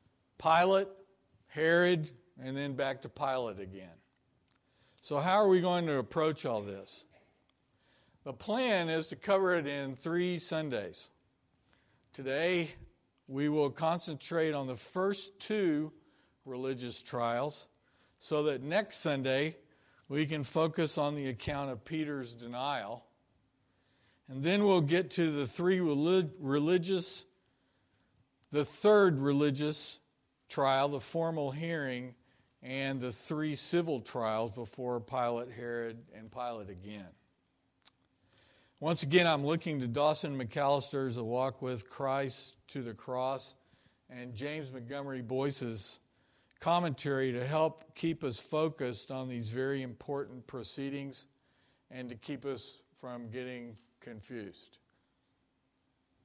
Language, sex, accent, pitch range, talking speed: English, male, American, 125-155 Hz, 120 wpm